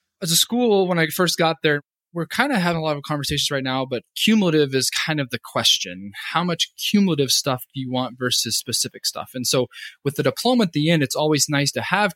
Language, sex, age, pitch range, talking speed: English, male, 20-39, 115-150 Hz, 235 wpm